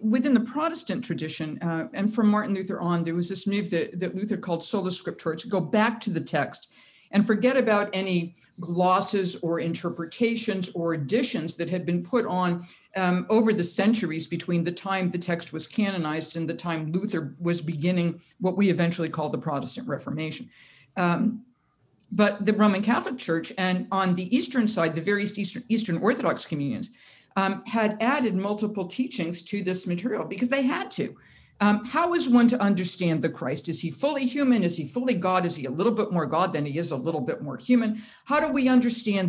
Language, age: English, 50-69